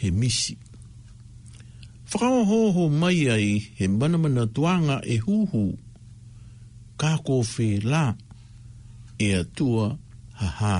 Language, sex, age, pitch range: English, male, 60-79, 110-135 Hz